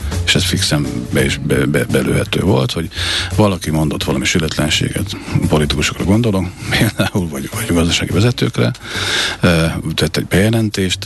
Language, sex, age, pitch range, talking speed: Hungarian, male, 50-69, 80-105 Hz, 130 wpm